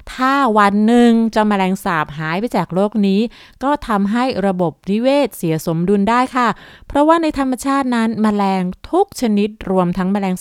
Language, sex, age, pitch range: Thai, female, 20-39, 180-235 Hz